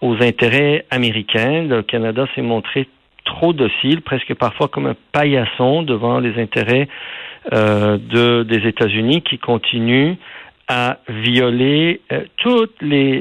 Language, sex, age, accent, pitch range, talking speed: French, male, 50-69, French, 125-155 Hz, 125 wpm